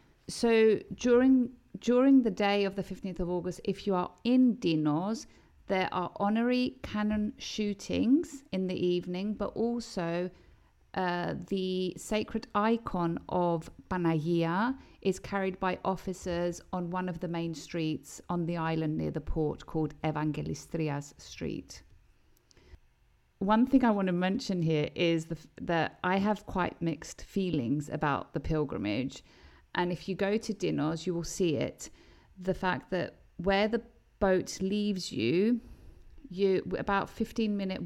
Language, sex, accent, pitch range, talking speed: Greek, female, British, 165-205 Hz, 140 wpm